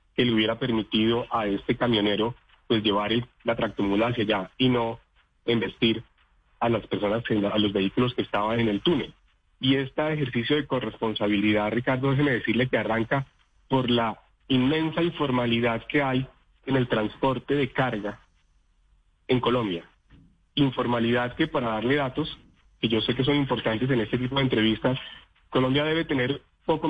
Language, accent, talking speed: Spanish, Colombian, 160 wpm